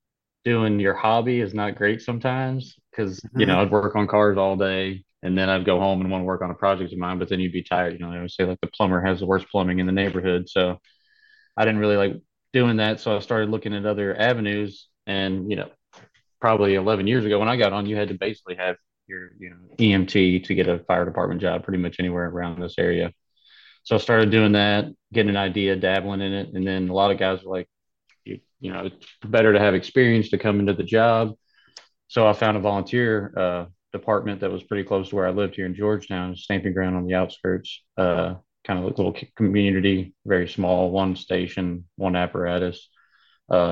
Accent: American